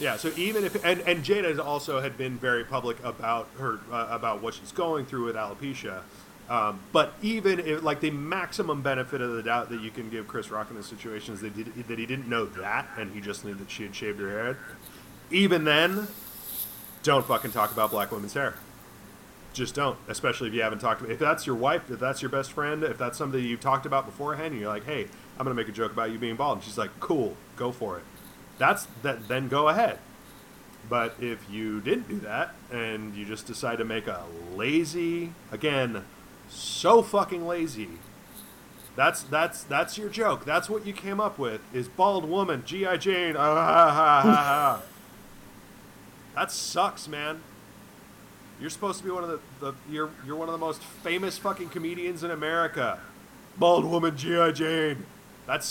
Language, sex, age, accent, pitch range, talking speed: English, male, 30-49, American, 115-170 Hz, 190 wpm